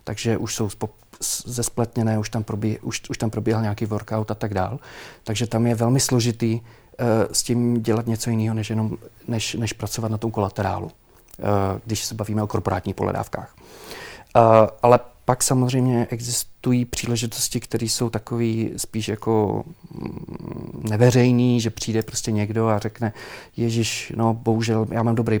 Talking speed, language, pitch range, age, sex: 155 wpm, Czech, 105-115 Hz, 40-59, male